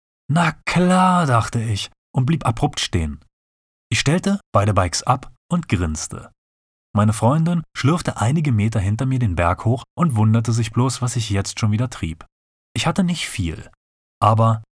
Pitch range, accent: 95-135 Hz, German